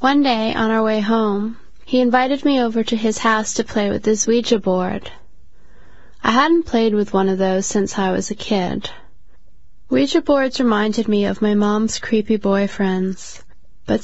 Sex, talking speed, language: female, 175 wpm, English